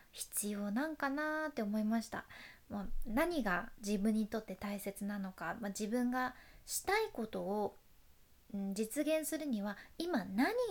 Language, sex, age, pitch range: Japanese, female, 20-39, 205-280 Hz